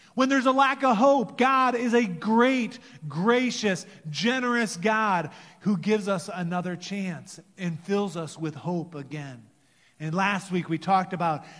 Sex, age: male, 30-49